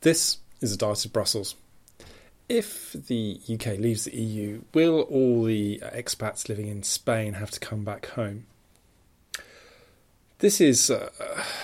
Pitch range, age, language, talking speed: 100-115 Hz, 30-49, English, 150 wpm